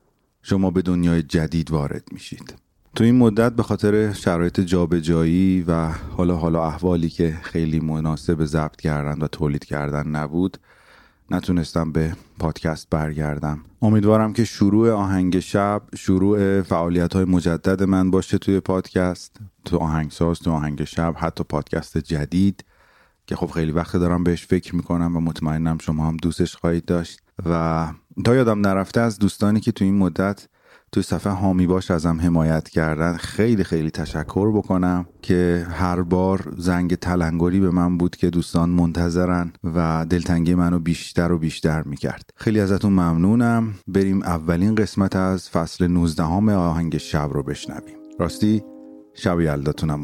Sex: male